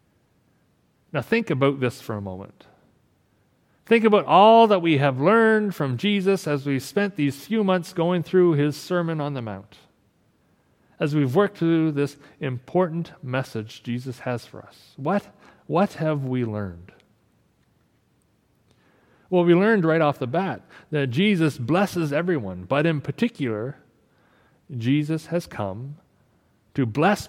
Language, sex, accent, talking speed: English, male, American, 140 wpm